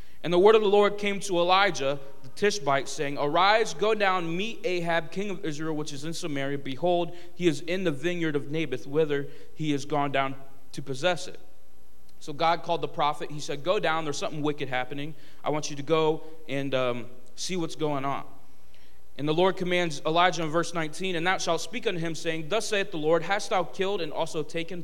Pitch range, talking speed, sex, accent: 140-175 Hz, 215 wpm, male, American